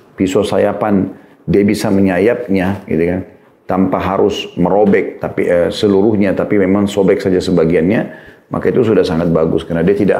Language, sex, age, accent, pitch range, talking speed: Indonesian, male, 40-59, native, 85-100 Hz, 155 wpm